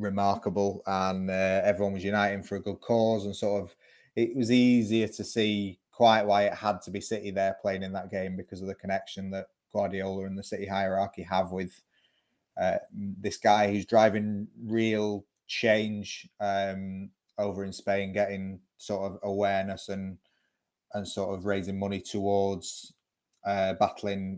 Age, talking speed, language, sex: 20-39, 160 wpm, English, male